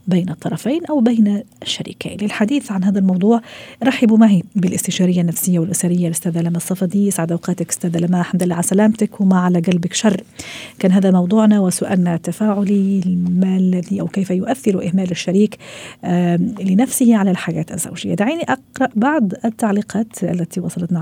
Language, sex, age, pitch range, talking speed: Arabic, female, 40-59, 175-205 Hz, 145 wpm